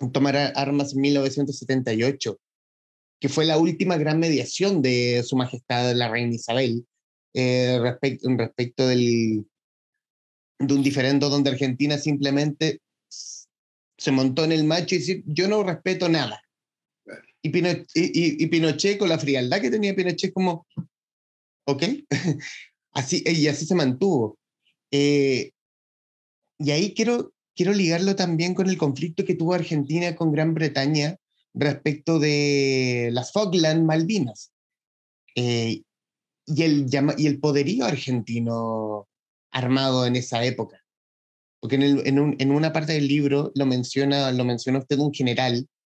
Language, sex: Spanish, male